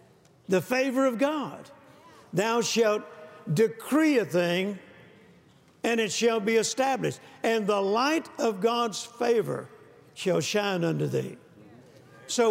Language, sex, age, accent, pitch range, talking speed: English, male, 60-79, American, 190-245 Hz, 120 wpm